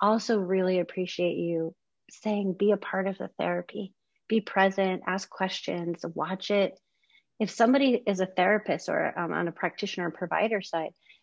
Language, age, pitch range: English, 30-49, 170-210 Hz